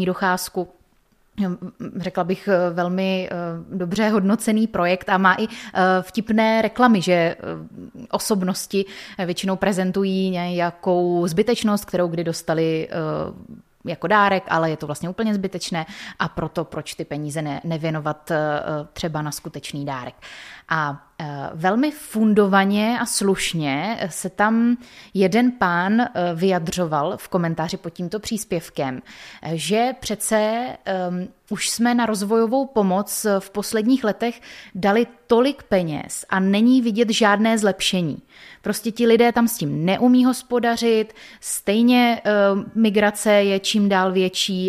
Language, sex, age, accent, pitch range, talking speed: Czech, female, 20-39, native, 175-220 Hz, 115 wpm